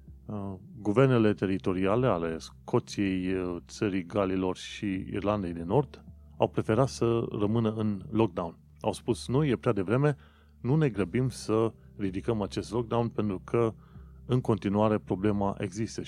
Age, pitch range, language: 30-49, 90-125 Hz, Romanian